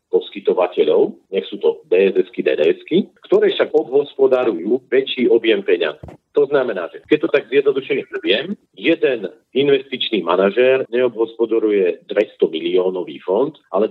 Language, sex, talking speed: Slovak, male, 120 wpm